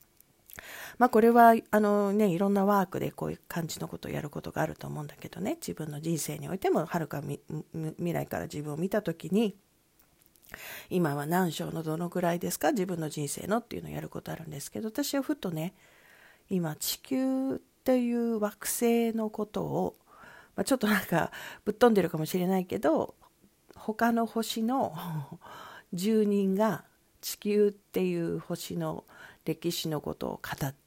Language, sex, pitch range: Japanese, female, 160-215 Hz